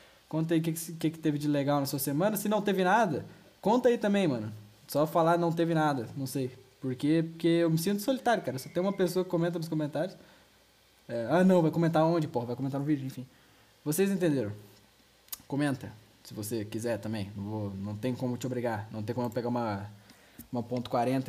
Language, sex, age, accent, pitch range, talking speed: Portuguese, male, 10-29, Brazilian, 115-160 Hz, 220 wpm